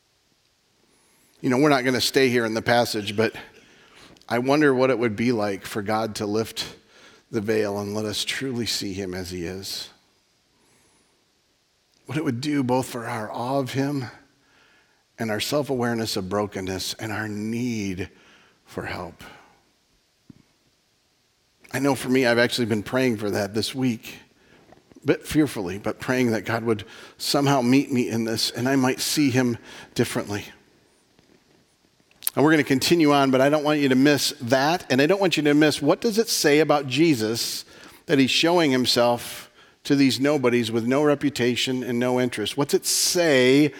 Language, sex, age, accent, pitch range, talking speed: English, male, 50-69, American, 115-145 Hz, 175 wpm